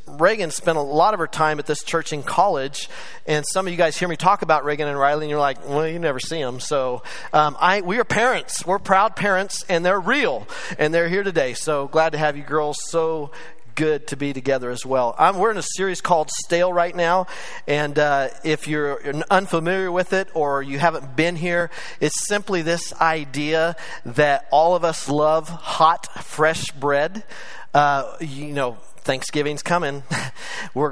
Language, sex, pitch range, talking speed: English, male, 140-165 Hz, 190 wpm